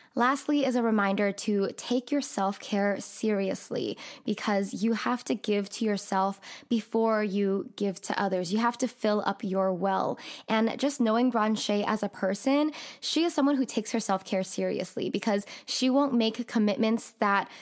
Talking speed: 165 wpm